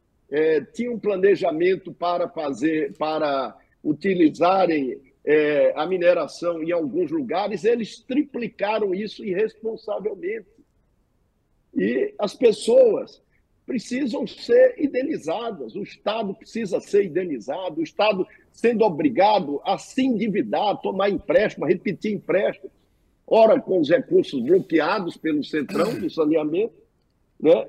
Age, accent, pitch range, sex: 60-79, Brazilian, 185-300 Hz, male